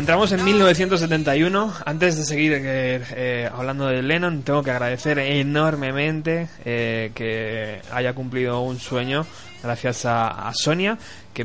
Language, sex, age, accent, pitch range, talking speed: Spanish, male, 20-39, Spanish, 120-140 Hz, 135 wpm